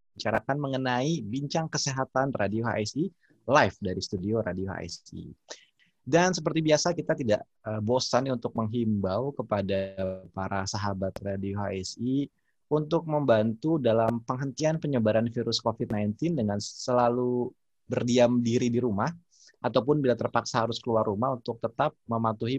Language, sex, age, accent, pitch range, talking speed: Indonesian, male, 20-39, native, 105-130 Hz, 120 wpm